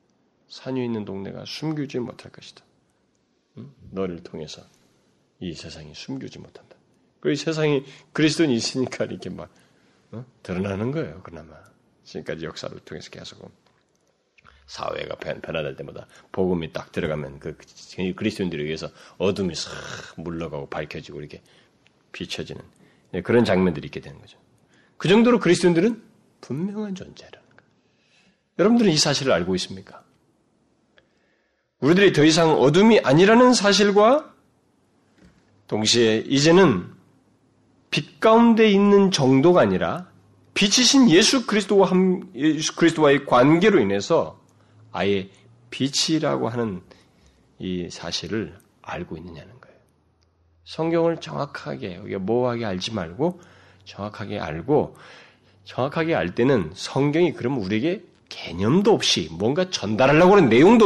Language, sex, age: Korean, male, 40-59